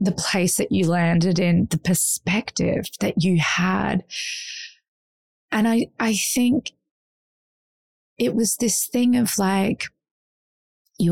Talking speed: 120 wpm